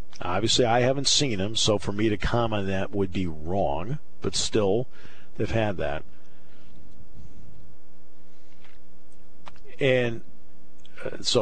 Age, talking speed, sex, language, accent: 50-69, 115 wpm, male, English, American